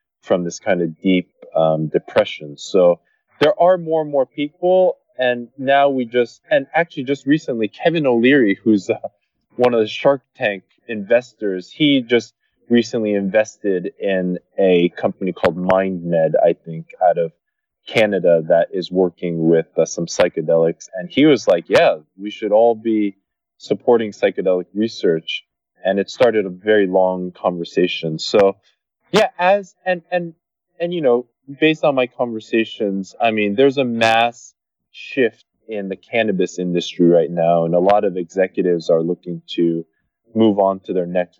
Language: English